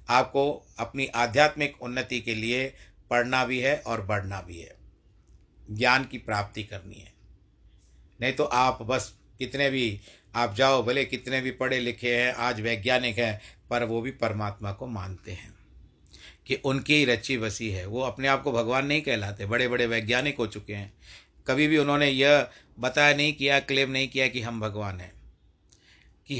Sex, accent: male, native